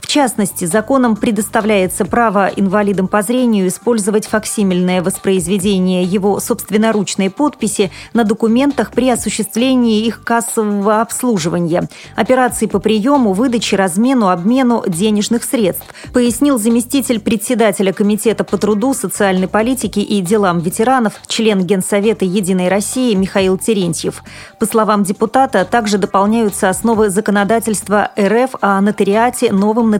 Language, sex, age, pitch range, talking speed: Russian, female, 30-49, 195-230 Hz, 115 wpm